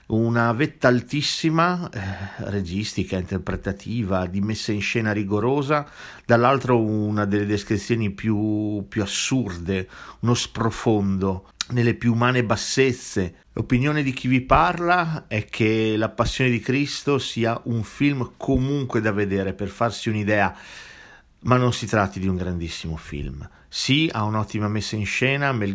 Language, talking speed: Italian, 135 wpm